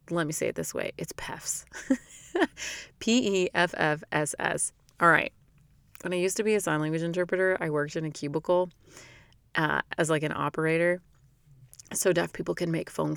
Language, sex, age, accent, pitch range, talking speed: English, female, 30-49, American, 155-185 Hz, 165 wpm